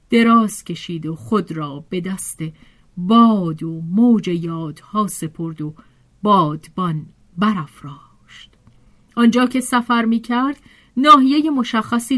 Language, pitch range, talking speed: Persian, 170-235 Hz, 110 wpm